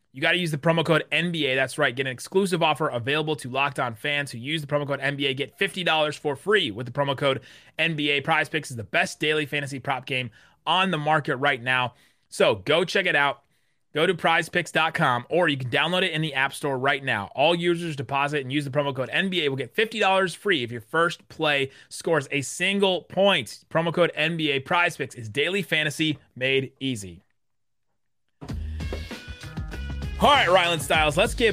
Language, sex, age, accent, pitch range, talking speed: English, male, 30-49, American, 135-170 Hz, 190 wpm